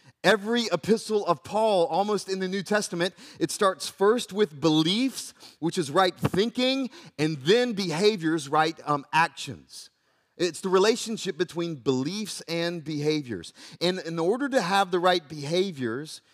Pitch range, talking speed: 120-175 Hz, 145 wpm